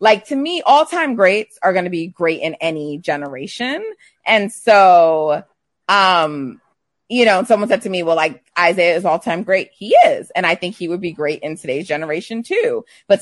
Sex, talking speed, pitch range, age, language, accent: female, 190 wpm, 160-215 Hz, 30-49, English, American